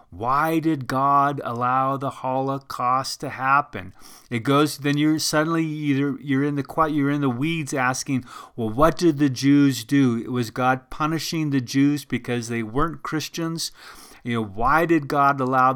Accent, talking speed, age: American, 170 wpm, 40-59